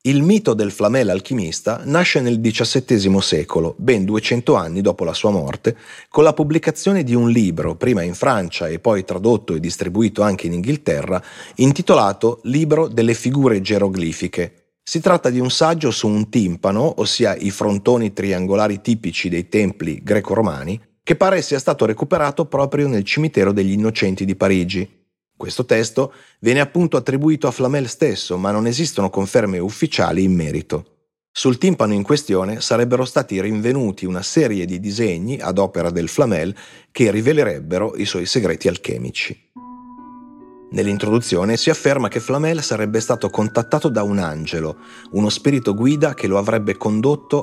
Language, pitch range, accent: Italian, 95-140 Hz, native